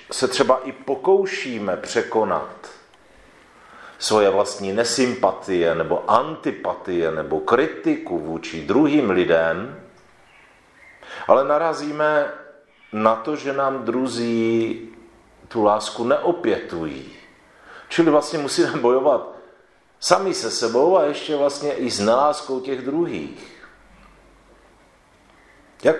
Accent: native